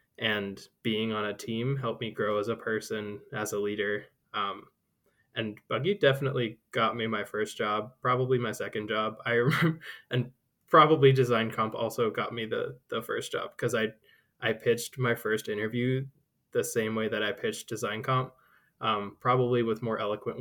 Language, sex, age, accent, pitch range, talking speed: English, male, 20-39, American, 110-130 Hz, 175 wpm